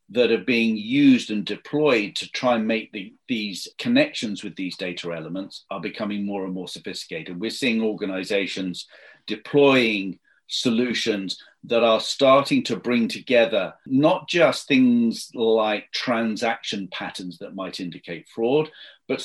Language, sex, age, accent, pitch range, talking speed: English, male, 40-59, British, 95-125 Hz, 140 wpm